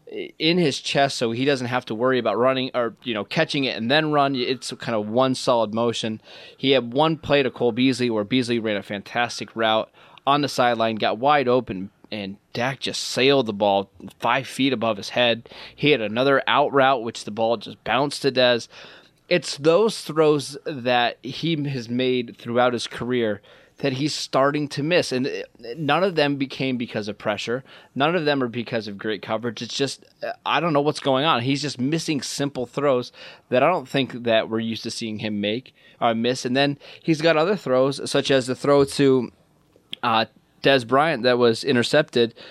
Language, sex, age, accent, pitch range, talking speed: English, male, 20-39, American, 115-145 Hz, 200 wpm